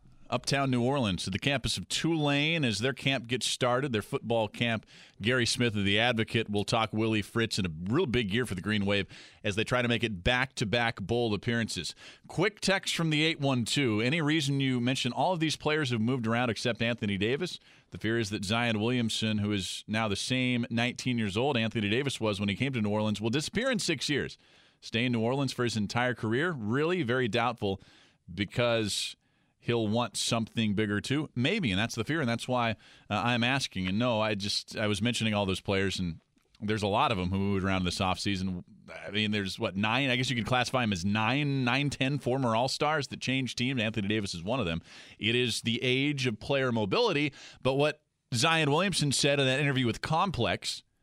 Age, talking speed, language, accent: 40-59, 215 wpm, English, American